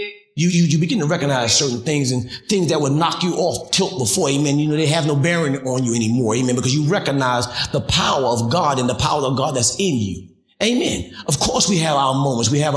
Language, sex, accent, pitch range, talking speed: English, male, American, 135-190 Hz, 245 wpm